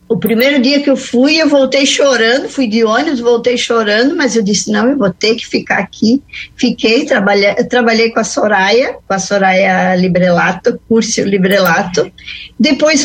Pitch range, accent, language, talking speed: 210-255 Hz, Brazilian, Portuguese, 165 wpm